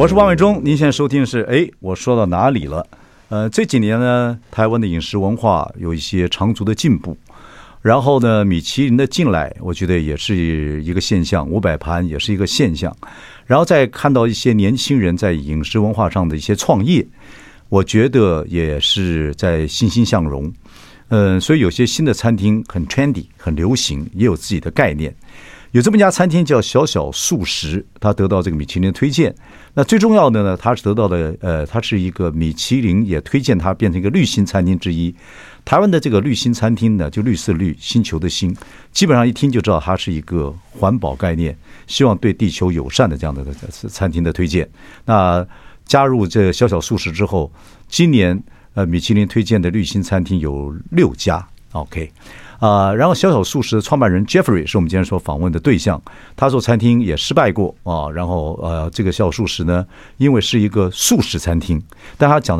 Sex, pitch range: male, 85-120 Hz